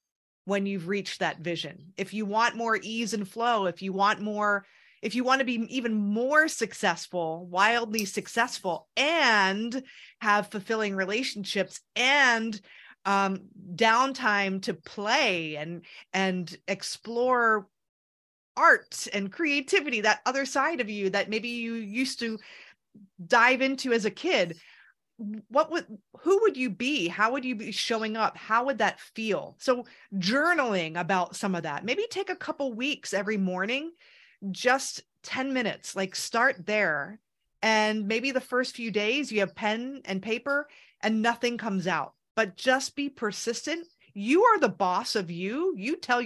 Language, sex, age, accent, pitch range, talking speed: English, female, 30-49, American, 195-255 Hz, 155 wpm